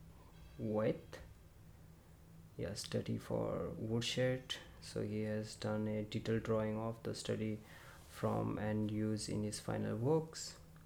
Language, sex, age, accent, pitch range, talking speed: English, male, 20-39, Indian, 85-110 Hz, 120 wpm